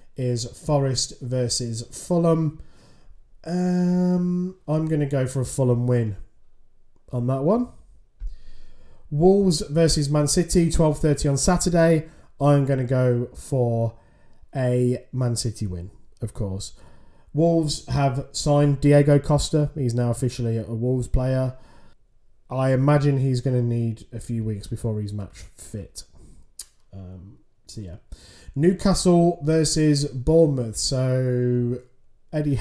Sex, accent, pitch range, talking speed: male, British, 115-150 Hz, 120 wpm